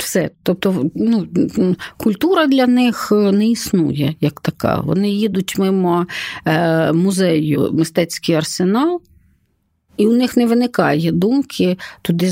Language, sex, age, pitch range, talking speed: Ukrainian, female, 50-69, 170-240 Hz, 105 wpm